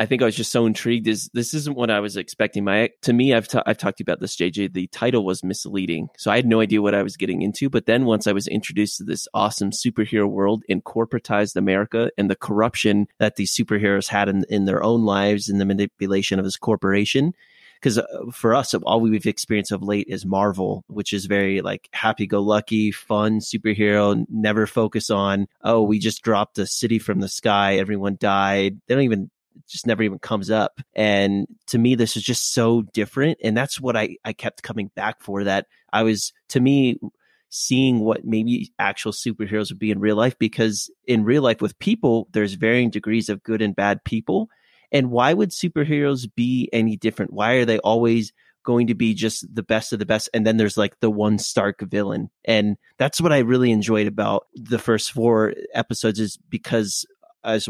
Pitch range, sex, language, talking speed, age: 100-115 Hz, male, English, 210 wpm, 30-49